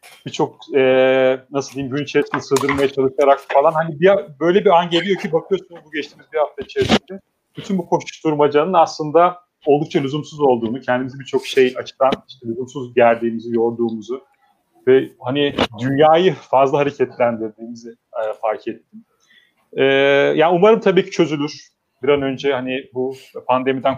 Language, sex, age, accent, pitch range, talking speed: Turkish, male, 30-49, native, 125-170 Hz, 140 wpm